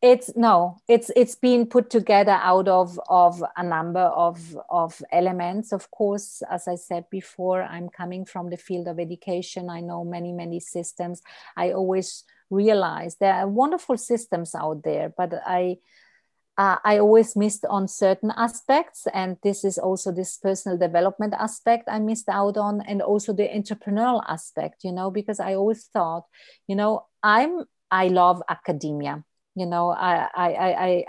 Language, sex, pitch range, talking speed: English, female, 180-220 Hz, 160 wpm